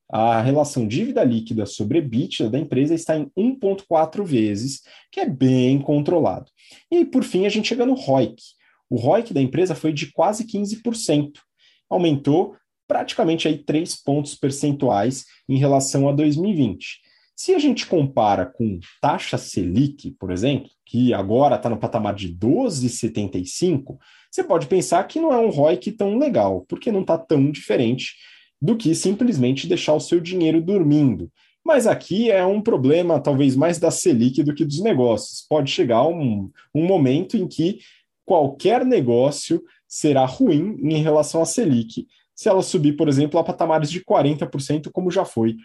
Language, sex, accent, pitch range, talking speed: Portuguese, male, Brazilian, 130-180 Hz, 160 wpm